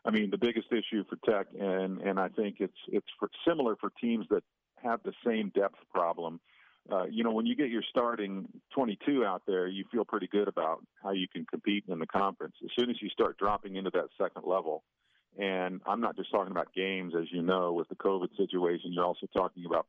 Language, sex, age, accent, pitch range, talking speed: English, male, 50-69, American, 90-105 Hz, 225 wpm